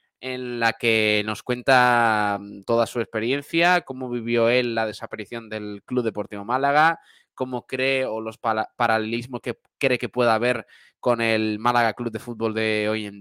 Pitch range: 110-145 Hz